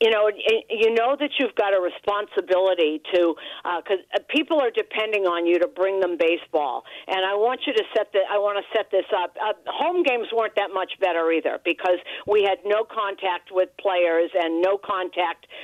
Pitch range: 185-240 Hz